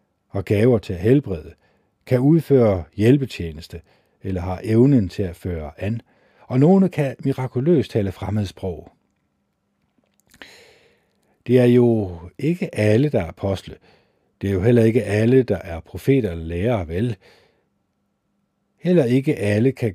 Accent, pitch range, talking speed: native, 95-125 Hz, 130 wpm